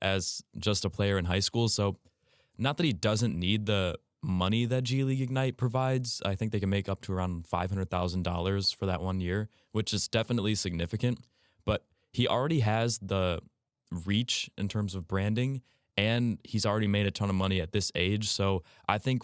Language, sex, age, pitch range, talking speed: English, male, 20-39, 95-115 Hz, 195 wpm